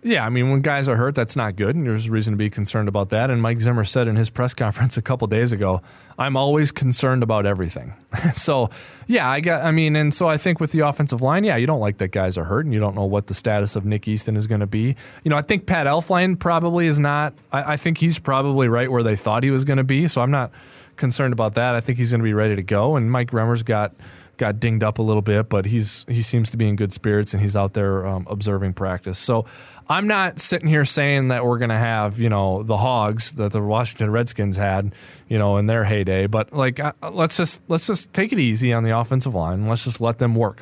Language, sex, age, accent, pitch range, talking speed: English, male, 20-39, American, 105-140 Hz, 270 wpm